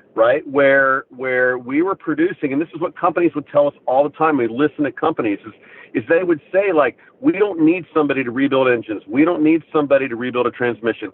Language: English